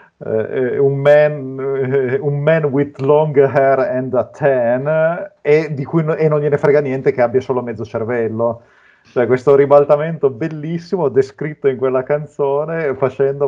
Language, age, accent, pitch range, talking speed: Italian, 30-49, native, 120-140 Hz, 155 wpm